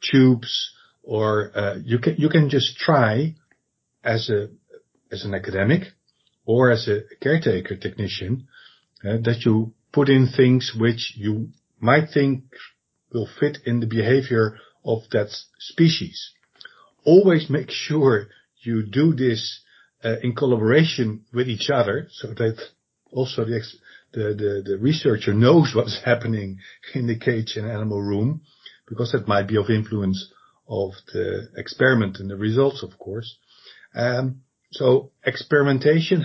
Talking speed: 140 wpm